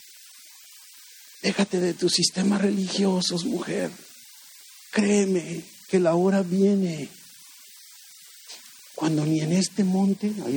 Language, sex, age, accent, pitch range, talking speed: Spanish, male, 50-69, Mexican, 150-210 Hz, 95 wpm